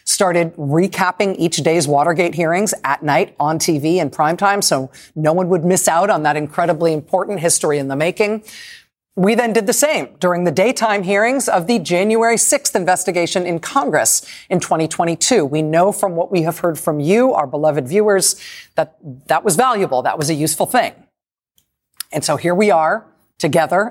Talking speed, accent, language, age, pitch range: 180 wpm, American, English, 40-59, 165-235 Hz